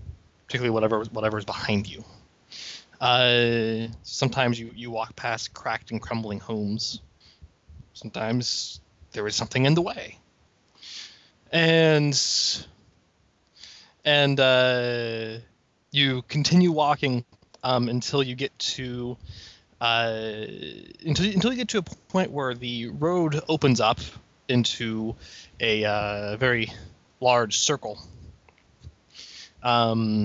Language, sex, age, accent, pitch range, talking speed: English, male, 20-39, American, 110-145 Hz, 105 wpm